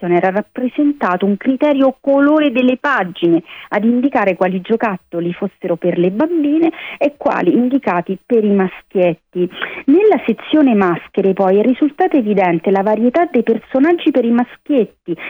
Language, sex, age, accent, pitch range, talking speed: Italian, female, 40-59, native, 190-275 Hz, 135 wpm